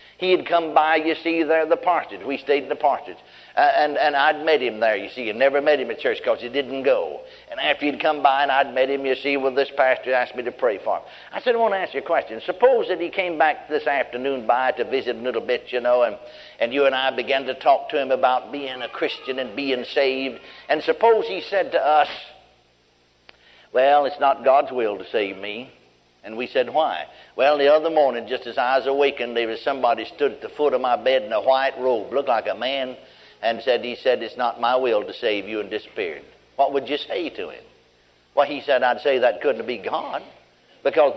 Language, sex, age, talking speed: English, male, 60-79, 245 wpm